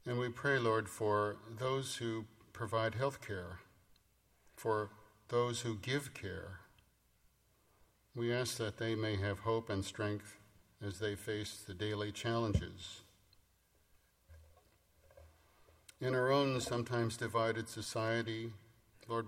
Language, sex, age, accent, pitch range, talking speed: English, male, 50-69, American, 100-115 Hz, 115 wpm